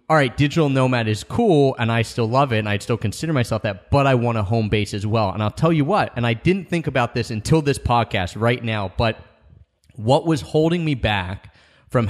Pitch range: 105-140 Hz